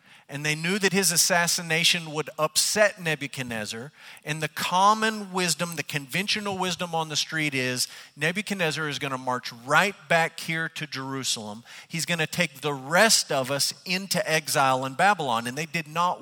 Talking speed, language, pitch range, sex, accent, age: 170 wpm, English, 135-175 Hz, male, American, 40-59